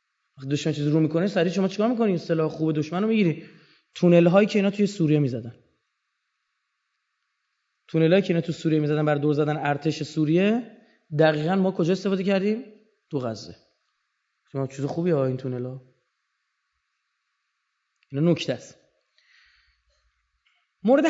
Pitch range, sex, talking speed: 170-230 Hz, male, 135 wpm